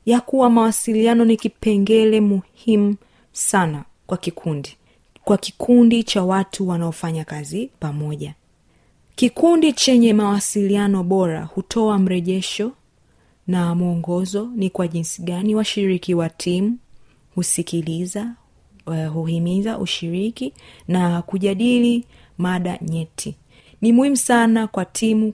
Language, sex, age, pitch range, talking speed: Swahili, female, 30-49, 180-225 Hz, 110 wpm